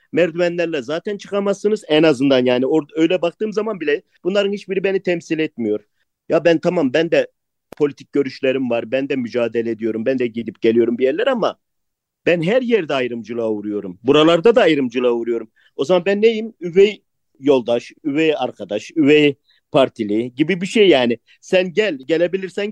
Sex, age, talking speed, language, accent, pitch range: male, 50-69, 160 wpm, Turkish, native, 125-195 Hz